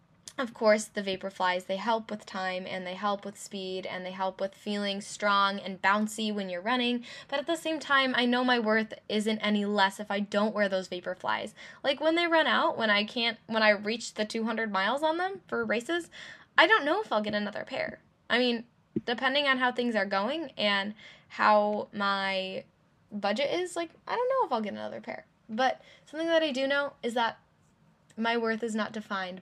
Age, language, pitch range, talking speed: 10-29, English, 195-245 Hz, 215 wpm